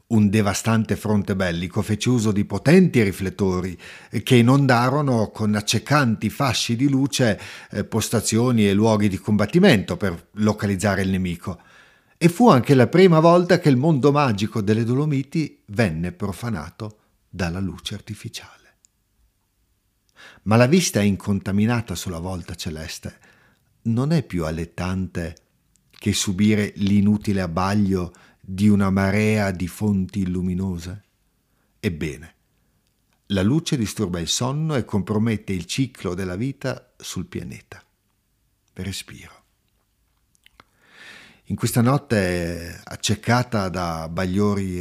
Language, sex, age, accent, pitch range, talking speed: Italian, male, 50-69, native, 95-115 Hz, 115 wpm